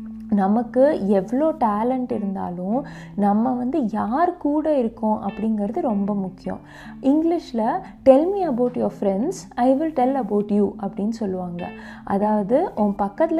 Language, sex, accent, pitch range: Tamil, female, native, 205-255 Hz